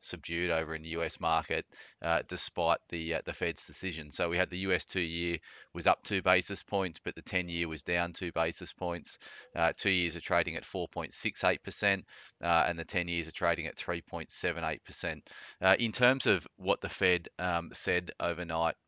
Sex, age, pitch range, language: male, 30-49, 80-90 Hz, English